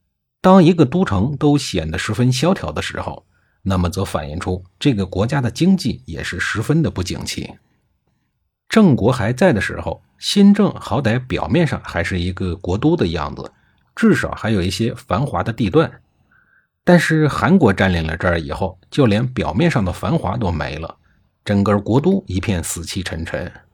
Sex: male